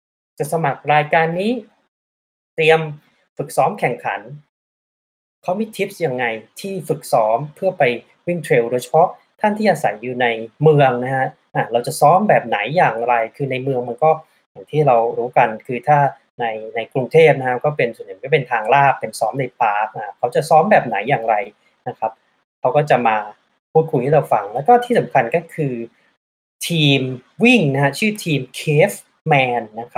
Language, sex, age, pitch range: Thai, male, 20-39, 120-160 Hz